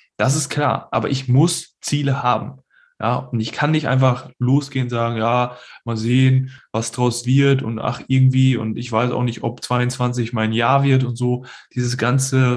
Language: German